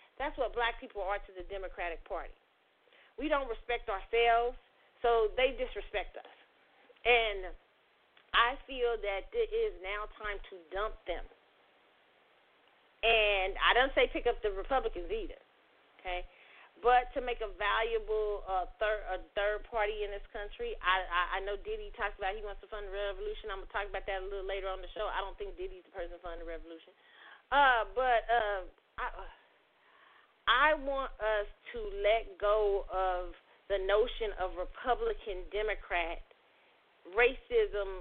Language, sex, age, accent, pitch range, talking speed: English, female, 30-49, American, 200-255 Hz, 165 wpm